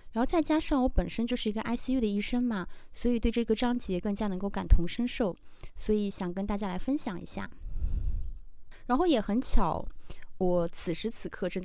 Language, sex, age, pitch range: Chinese, female, 20-39, 185-235 Hz